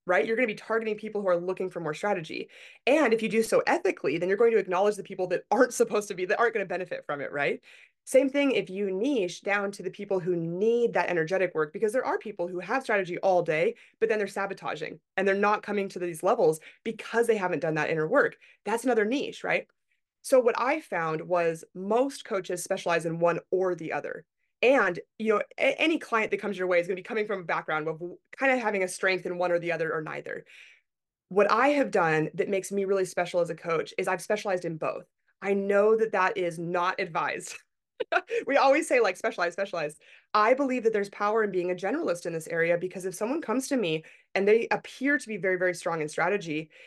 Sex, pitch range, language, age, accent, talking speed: female, 180-225 Hz, English, 20-39, American, 235 wpm